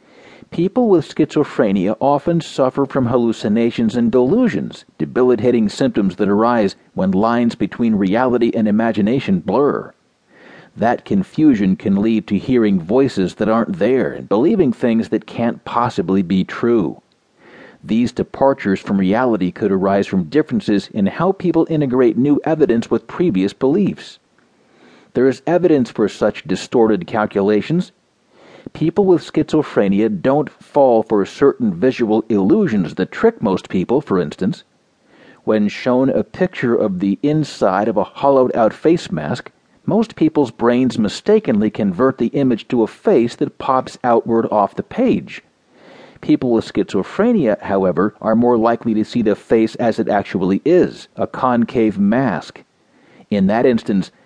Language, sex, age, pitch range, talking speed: English, male, 50-69, 110-155 Hz, 140 wpm